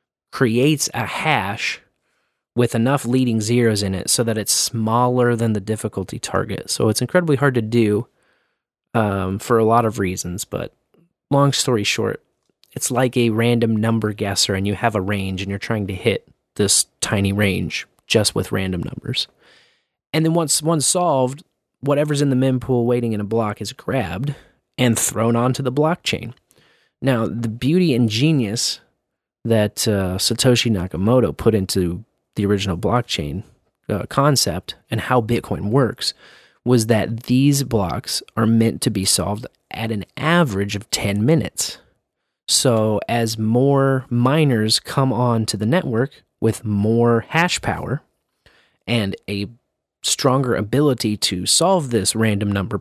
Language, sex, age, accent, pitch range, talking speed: English, male, 30-49, American, 105-130 Hz, 150 wpm